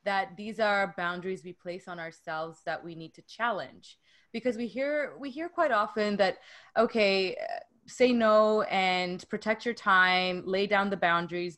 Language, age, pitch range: English, 20-39, 170-205 Hz